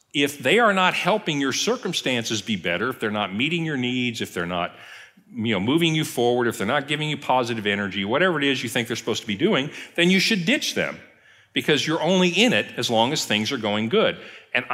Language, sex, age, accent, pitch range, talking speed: English, male, 50-69, American, 105-145 Hz, 230 wpm